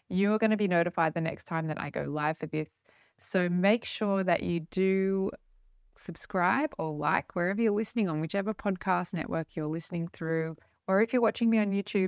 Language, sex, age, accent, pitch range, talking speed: English, female, 20-39, Australian, 165-205 Hz, 205 wpm